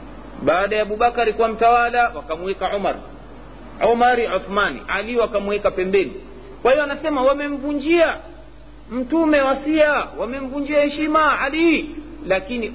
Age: 50-69